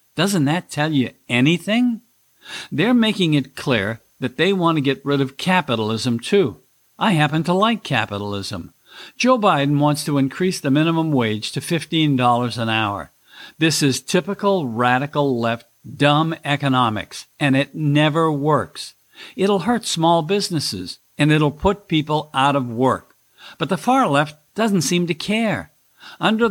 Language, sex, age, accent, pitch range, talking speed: English, male, 60-79, American, 130-175 Hz, 150 wpm